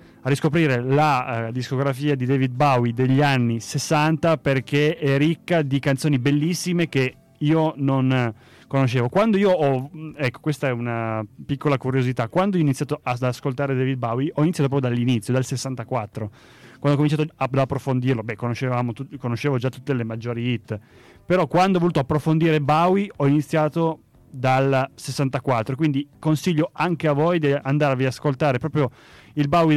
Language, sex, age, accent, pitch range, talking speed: Italian, male, 30-49, native, 125-155 Hz, 160 wpm